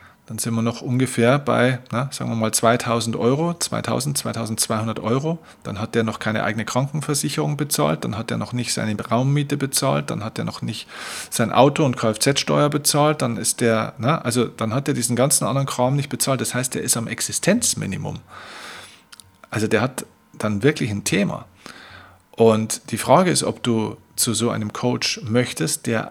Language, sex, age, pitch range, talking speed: German, male, 40-59, 115-145 Hz, 185 wpm